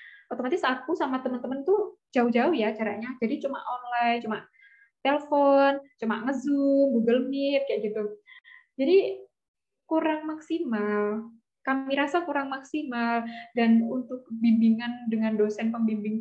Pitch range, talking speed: 225-275 Hz, 120 wpm